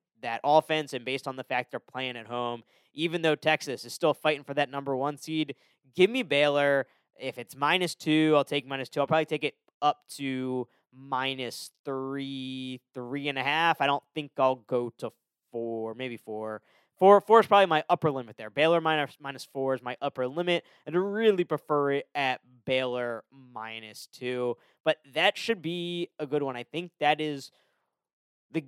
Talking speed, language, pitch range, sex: 190 wpm, English, 130-160 Hz, male